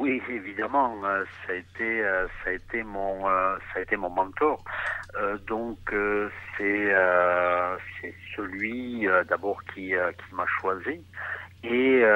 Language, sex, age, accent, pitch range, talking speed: French, male, 60-79, French, 95-110 Hz, 120 wpm